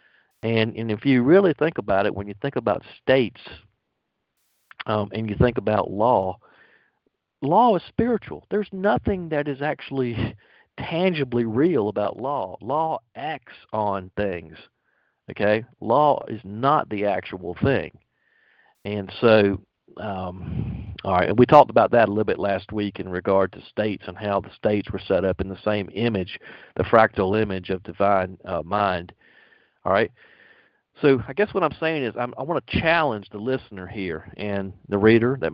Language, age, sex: English, 50-69, male